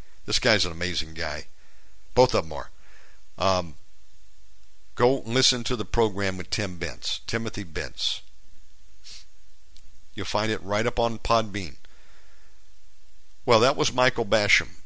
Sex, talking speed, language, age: male, 130 wpm, English, 50-69